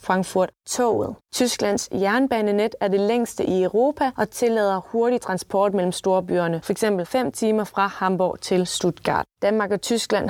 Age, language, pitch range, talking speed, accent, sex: 20-39, Danish, 185-230 Hz, 140 wpm, native, female